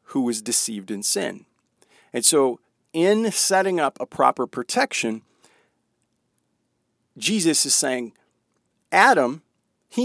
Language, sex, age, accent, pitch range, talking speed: English, male, 40-59, American, 110-165 Hz, 105 wpm